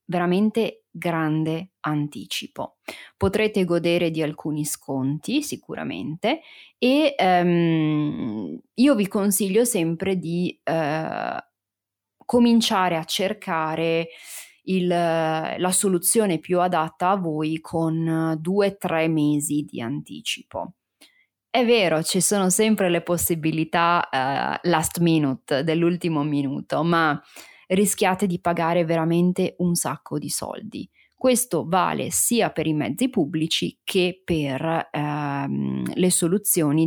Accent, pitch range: native, 155-190 Hz